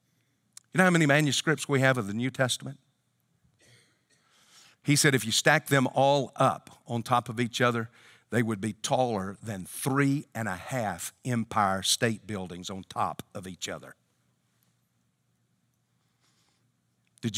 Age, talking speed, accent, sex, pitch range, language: 50-69, 145 wpm, American, male, 120-195 Hz, English